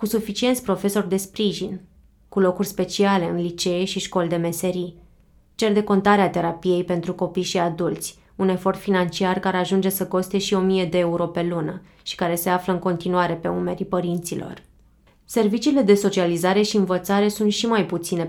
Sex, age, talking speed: female, 20-39, 175 wpm